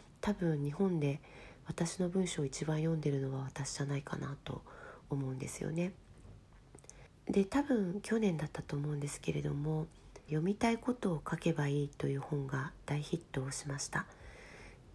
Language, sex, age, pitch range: Japanese, female, 40-59, 140-200 Hz